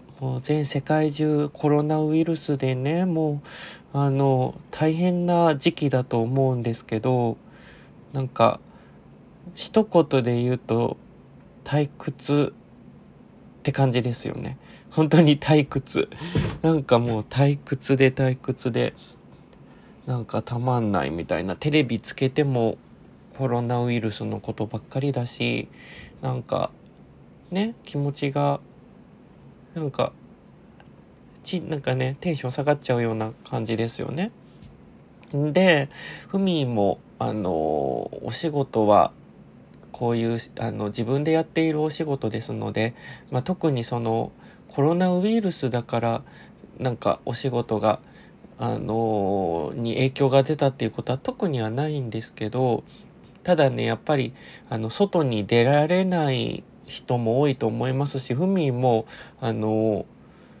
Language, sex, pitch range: Japanese, male, 115-150 Hz